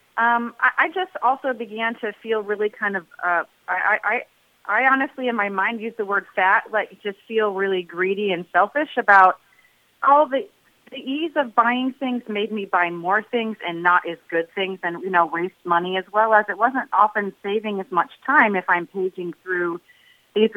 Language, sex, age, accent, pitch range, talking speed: English, female, 30-49, American, 170-215 Hz, 195 wpm